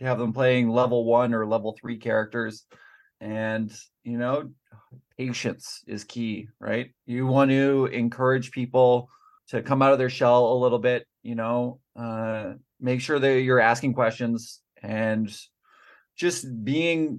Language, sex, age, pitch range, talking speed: English, male, 20-39, 115-135 Hz, 145 wpm